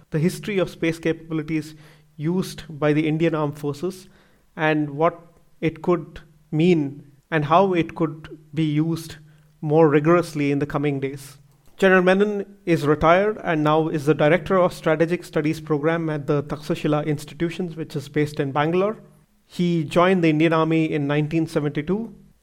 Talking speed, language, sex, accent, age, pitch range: 155 wpm, English, male, Indian, 30-49, 150-165 Hz